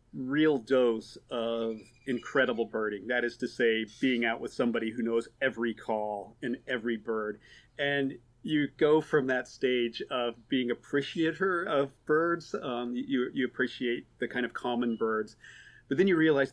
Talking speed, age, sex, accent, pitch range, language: 160 wpm, 40-59, male, American, 115-130 Hz, English